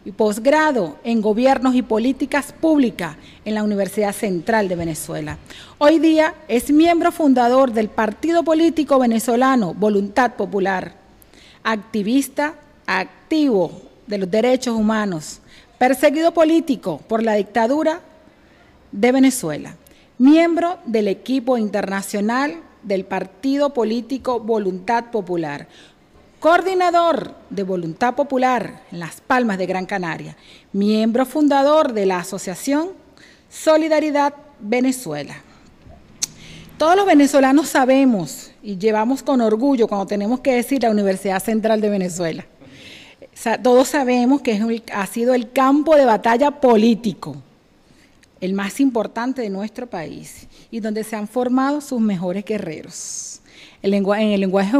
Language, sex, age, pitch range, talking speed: Spanish, female, 40-59, 205-280 Hz, 120 wpm